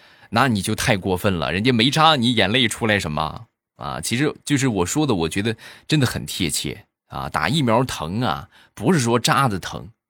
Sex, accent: male, native